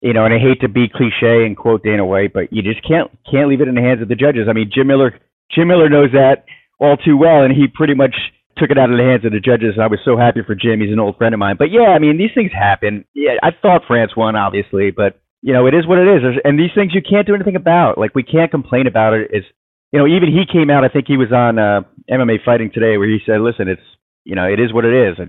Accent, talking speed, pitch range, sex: American, 300 wpm, 105-135 Hz, male